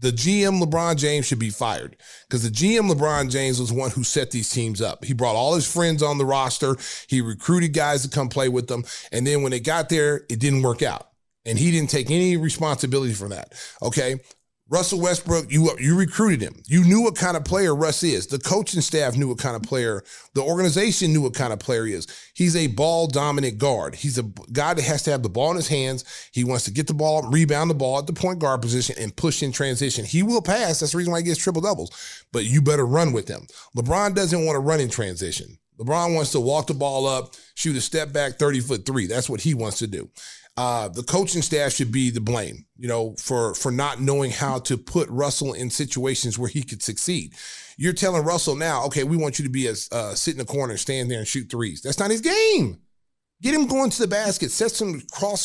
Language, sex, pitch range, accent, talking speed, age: English, male, 130-170 Hz, American, 240 wpm, 30-49